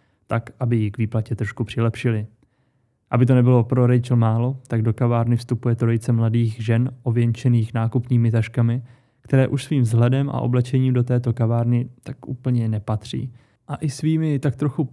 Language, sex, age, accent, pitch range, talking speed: Czech, male, 20-39, native, 115-130 Hz, 160 wpm